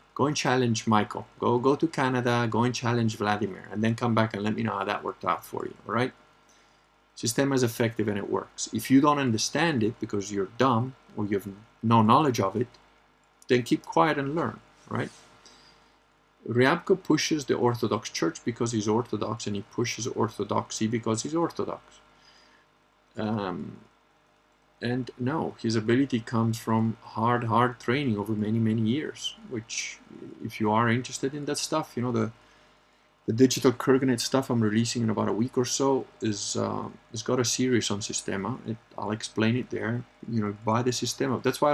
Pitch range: 110-125 Hz